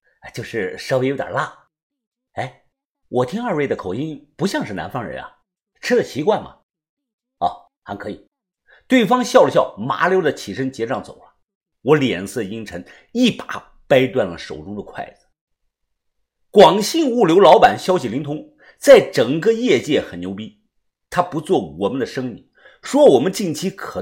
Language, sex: Chinese, male